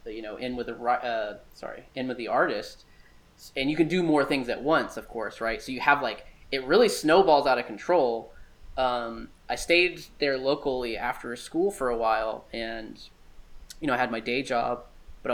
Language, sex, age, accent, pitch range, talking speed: English, male, 10-29, American, 110-135 Hz, 205 wpm